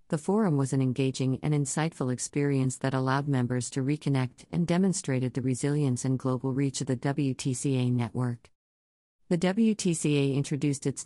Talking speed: 150 wpm